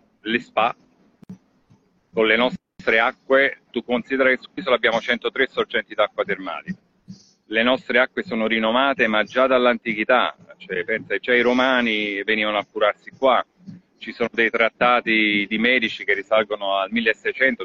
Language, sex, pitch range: Italian, male, 110-135 Hz